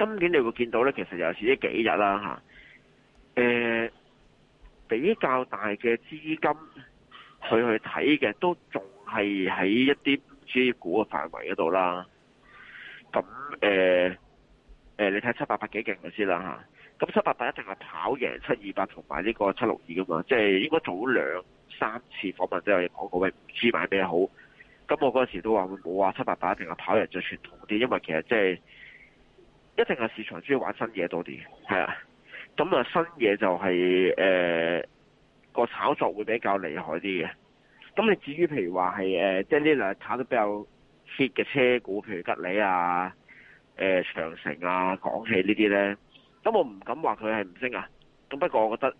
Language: Chinese